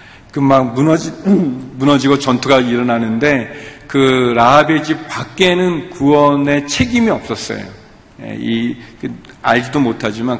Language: Korean